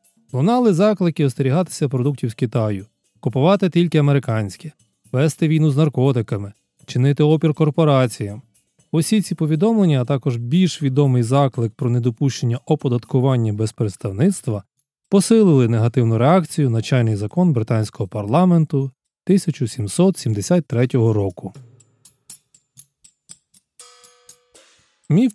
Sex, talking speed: male, 95 wpm